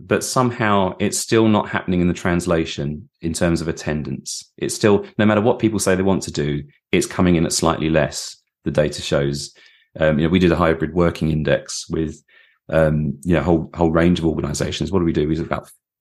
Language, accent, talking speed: English, British, 215 wpm